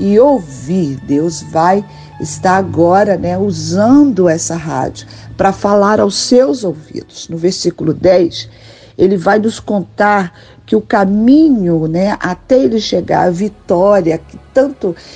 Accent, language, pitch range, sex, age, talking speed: Brazilian, Portuguese, 160-205 Hz, female, 50-69, 130 wpm